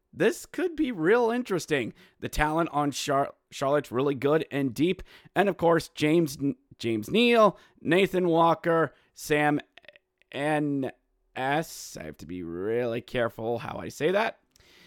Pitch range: 125-165 Hz